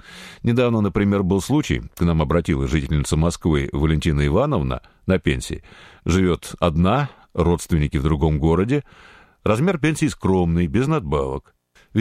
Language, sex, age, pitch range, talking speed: Russian, male, 50-69, 80-115 Hz, 125 wpm